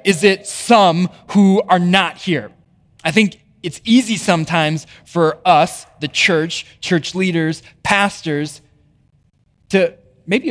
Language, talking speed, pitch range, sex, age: English, 120 wpm, 140-190 Hz, male, 20-39